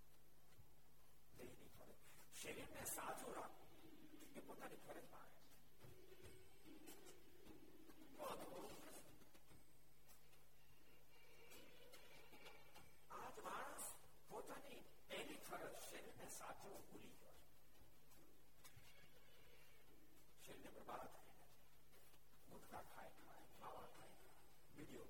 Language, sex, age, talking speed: Gujarati, male, 60-79, 70 wpm